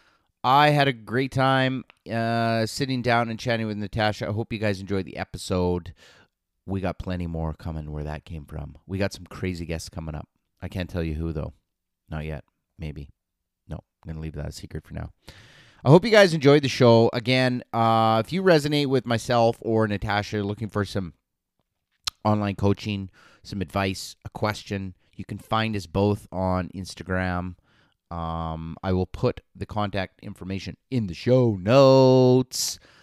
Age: 30-49